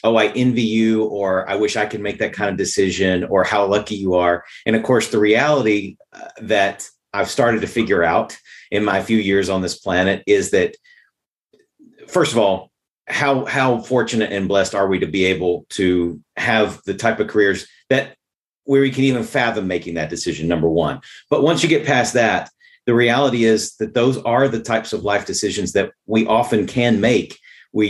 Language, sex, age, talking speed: English, male, 40-59, 200 wpm